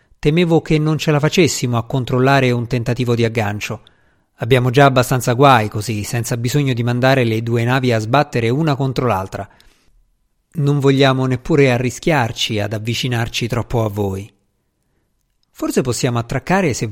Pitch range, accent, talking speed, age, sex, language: 110-145 Hz, native, 150 wpm, 50-69, male, Italian